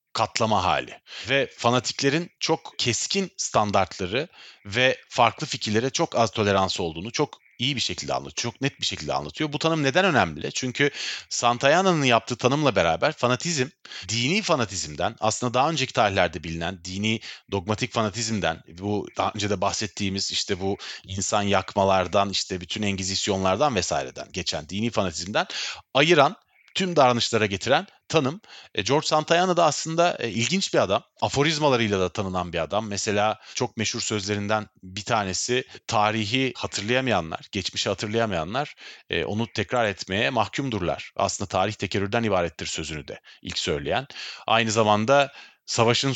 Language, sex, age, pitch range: Turkish, male, 40-59, 100-130 Hz